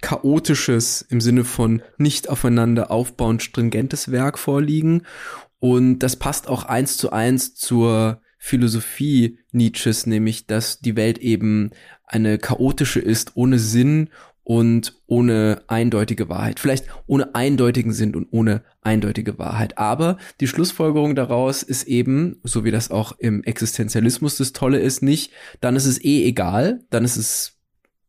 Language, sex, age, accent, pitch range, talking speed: German, male, 20-39, German, 115-135 Hz, 140 wpm